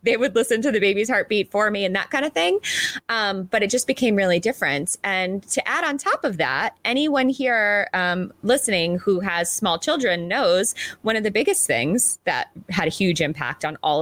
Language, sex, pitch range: English, female, 165-225 Hz